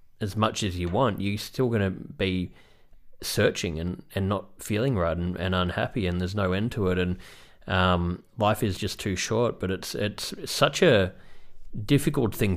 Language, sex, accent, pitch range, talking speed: English, male, Australian, 90-105 Hz, 180 wpm